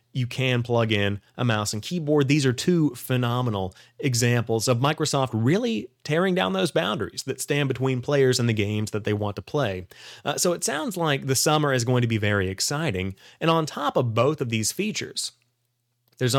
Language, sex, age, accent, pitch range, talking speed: English, male, 30-49, American, 110-130 Hz, 200 wpm